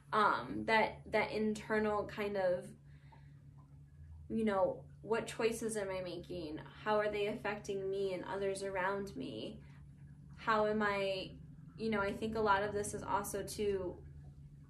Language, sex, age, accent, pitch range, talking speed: English, female, 10-29, American, 175-210 Hz, 145 wpm